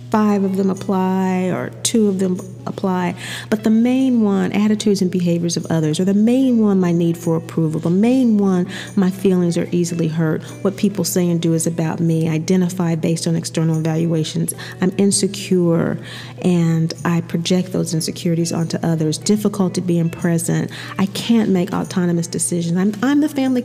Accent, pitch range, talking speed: American, 165-200 Hz, 180 wpm